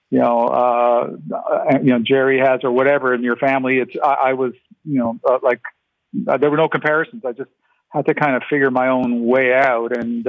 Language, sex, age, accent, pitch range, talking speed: English, male, 50-69, American, 120-140 Hz, 215 wpm